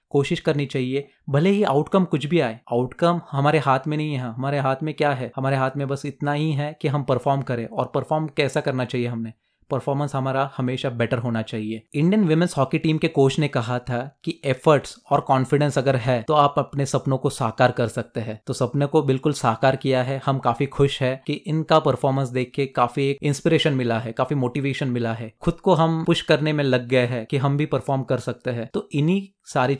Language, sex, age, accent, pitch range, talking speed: Hindi, male, 30-49, native, 130-155 Hz, 220 wpm